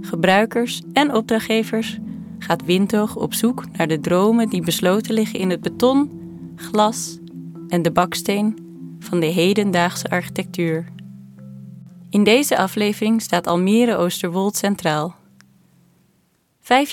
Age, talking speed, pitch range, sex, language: 30-49, 110 wpm, 170-225 Hz, female, Dutch